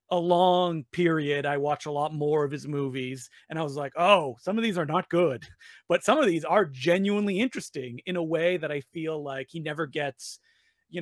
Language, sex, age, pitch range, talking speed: English, male, 30-49, 145-190 Hz, 220 wpm